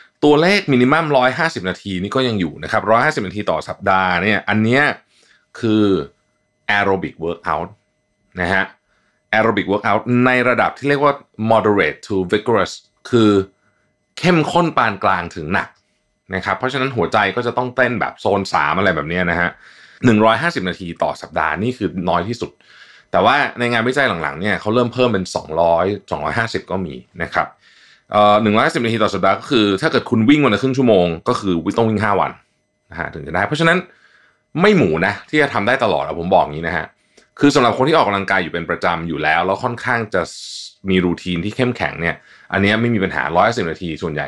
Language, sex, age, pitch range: Thai, male, 20-39, 95-125 Hz